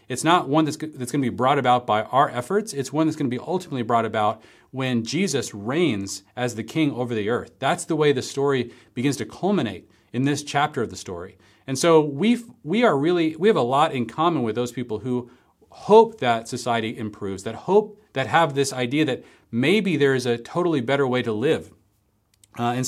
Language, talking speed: English, 220 wpm